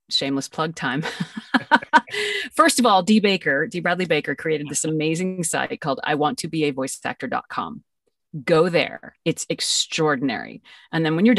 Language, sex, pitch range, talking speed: English, female, 150-210 Hz, 165 wpm